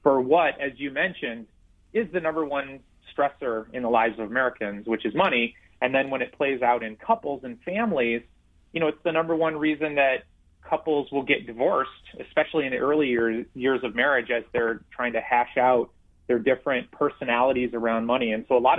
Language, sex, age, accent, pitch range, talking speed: English, male, 30-49, American, 115-150 Hz, 200 wpm